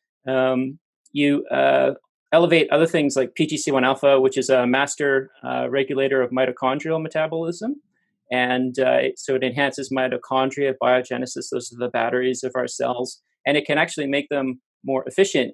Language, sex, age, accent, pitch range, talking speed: English, male, 30-49, American, 125-140 Hz, 155 wpm